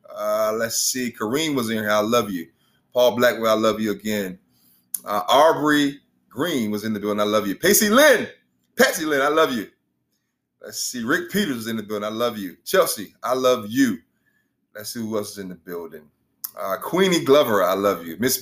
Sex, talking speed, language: male, 205 wpm, English